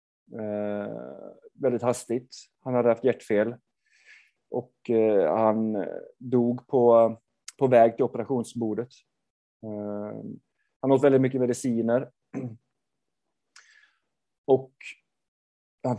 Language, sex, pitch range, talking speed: Swedish, male, 115-135 Hz, 80 wpm